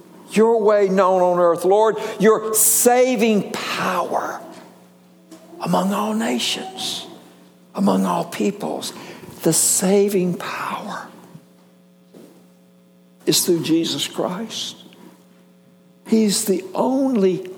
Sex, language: male, English